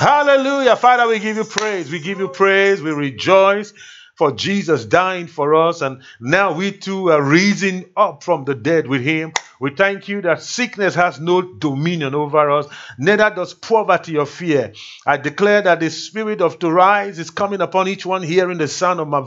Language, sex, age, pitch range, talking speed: English, male, 50-69, 155-215 Hz, 195 wpm